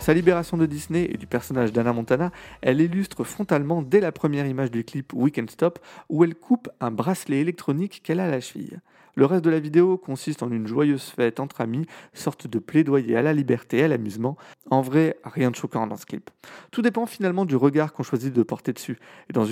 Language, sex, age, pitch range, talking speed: French, male, 30-49, 120-165 Hz, 220 wpm